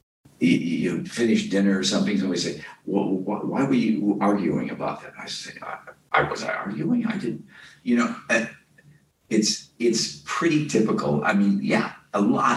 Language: English